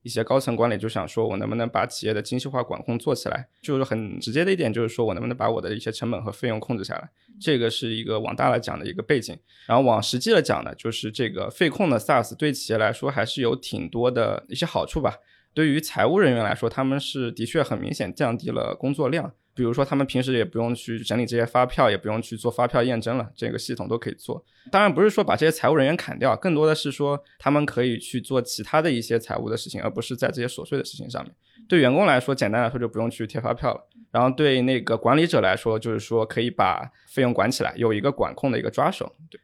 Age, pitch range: 20-39, 115-140 Hz